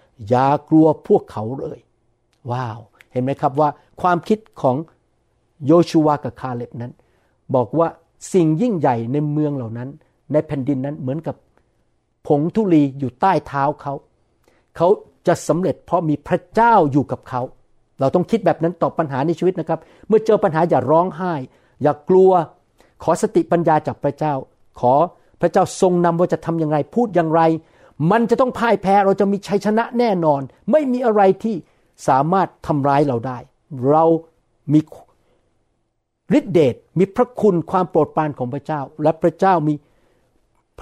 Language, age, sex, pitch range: Thai, 60-79, male, 130-180 Hz